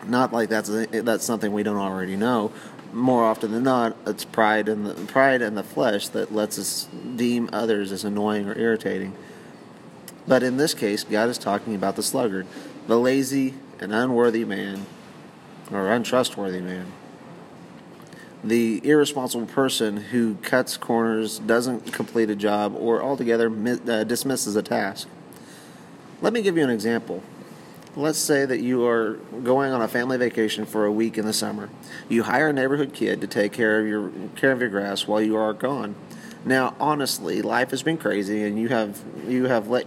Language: English